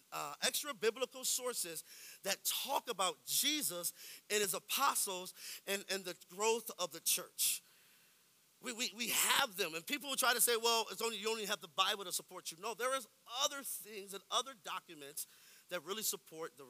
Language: English